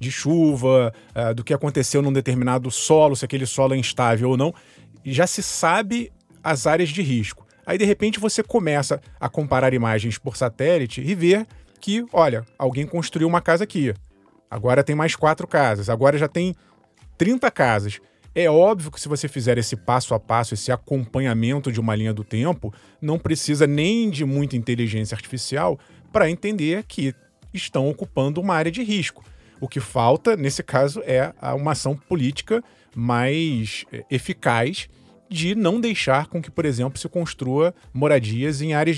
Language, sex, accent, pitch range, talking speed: Portuguese, male, Brazilian, 125-165 Hz, 165 wpm